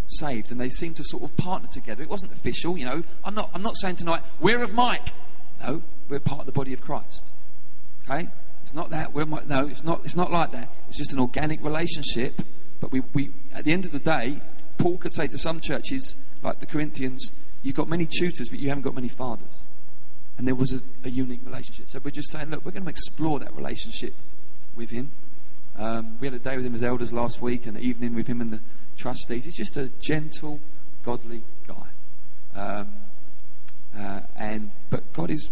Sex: male